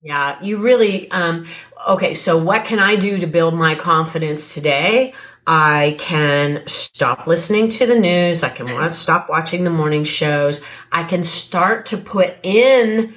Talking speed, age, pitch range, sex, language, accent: 165 wpm, 40-59, 155-205 Hz, female, English, American